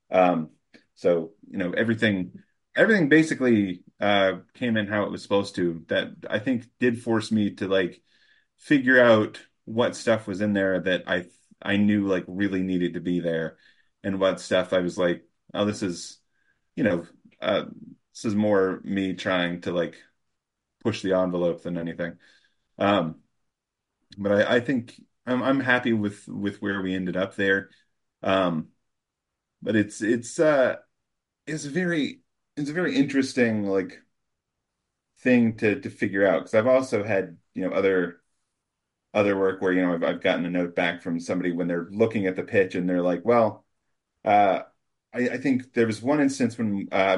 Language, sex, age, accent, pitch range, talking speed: English, male, 30-49, American, 90-115 Hz, 175 wpm